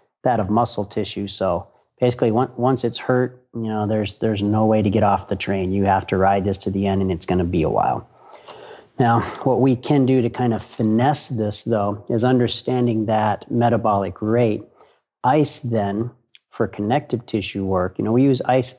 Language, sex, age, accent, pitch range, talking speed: English, male, 40-59, American, 100-120 Hz, 200 wpm